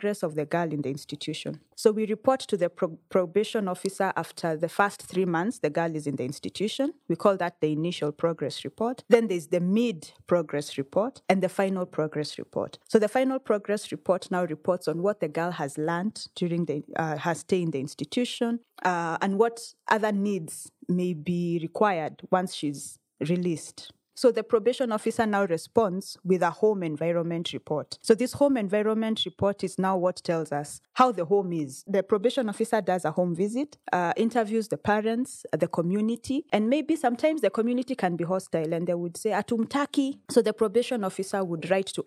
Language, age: English, 20-39